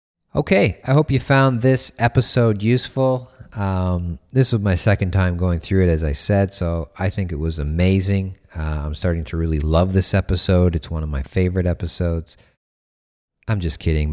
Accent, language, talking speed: American, English, 185 wpm